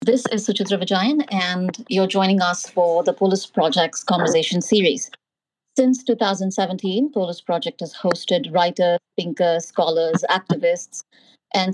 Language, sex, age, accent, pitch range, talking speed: English, female, 30-49, Indian, 175-225 Hz, 130 wpm